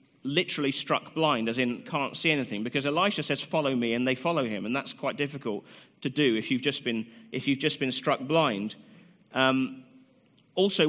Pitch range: 135-170 Hz